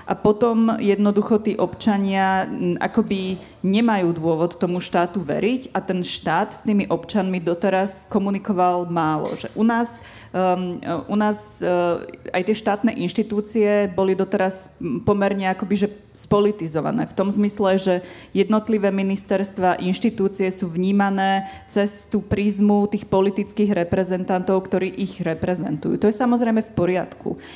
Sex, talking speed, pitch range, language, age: female, 125 wpm, 180-205 Hz, Slovak, 20-39